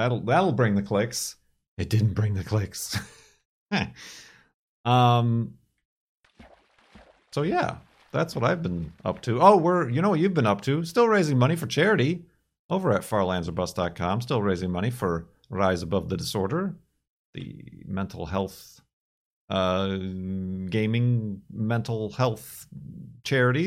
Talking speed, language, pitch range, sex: 130 wpm, English, 95-130 Hz, male